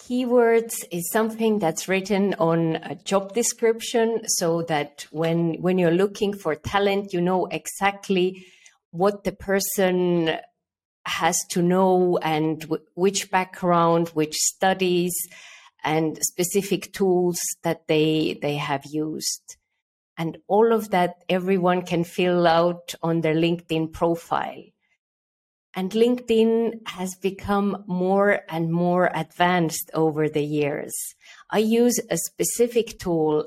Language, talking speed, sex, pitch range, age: English, 120 wpm, female, 160-195 Hz, 50-69